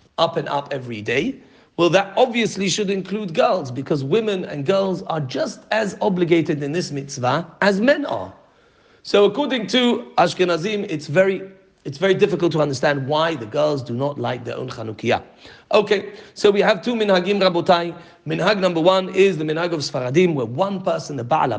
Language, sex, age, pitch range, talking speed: English, male, 40-59, 150-200 Hz, 180 wpm